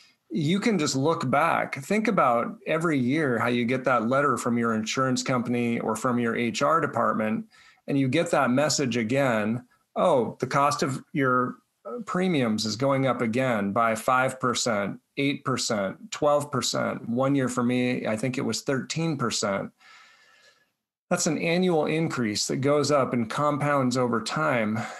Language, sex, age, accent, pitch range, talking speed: English, male, 40-59, American, 125-155 Hz, 150 wpm